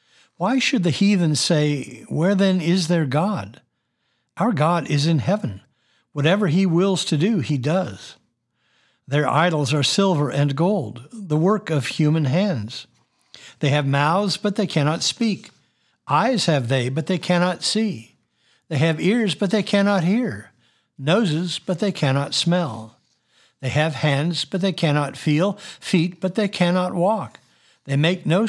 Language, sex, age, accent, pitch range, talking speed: English, male, 60-79, American, 145-195 Hz, 155 wpm